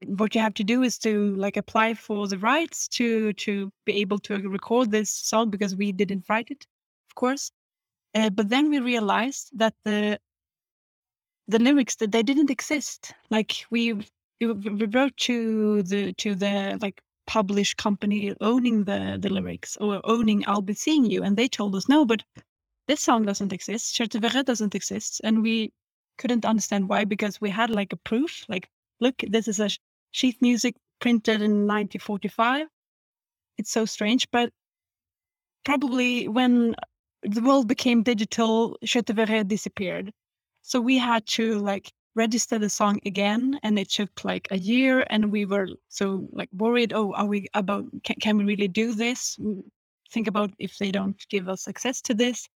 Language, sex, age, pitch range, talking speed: English, female, 30-49, 205-240 Hz, 170 wpm